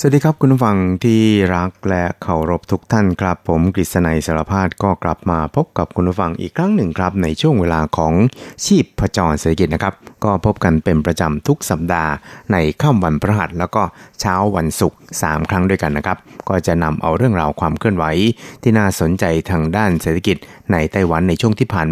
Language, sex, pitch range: Thai, male, 80-100 Hz